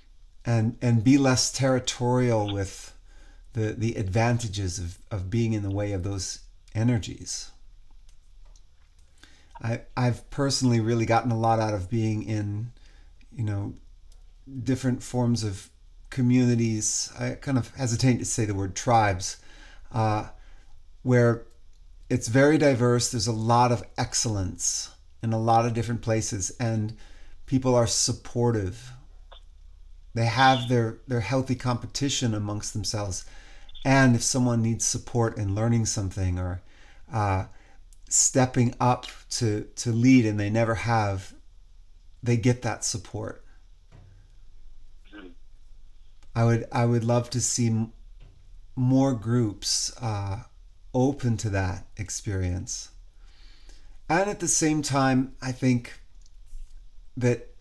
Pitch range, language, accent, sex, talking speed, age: 95-120 Hz, English, American, male, 120 wpm, 40-59